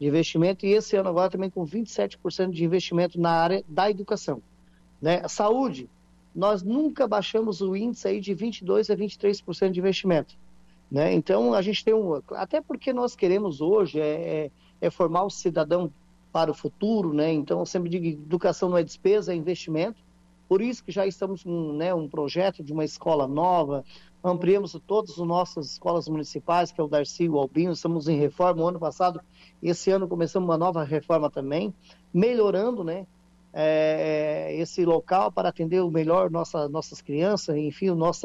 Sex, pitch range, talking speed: male, 155-195 Hz, 175 wpm